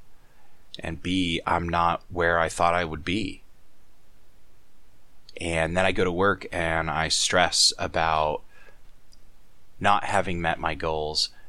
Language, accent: English, American